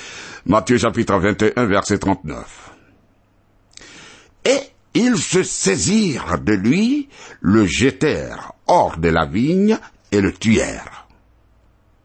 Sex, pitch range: male, 95-130 Hz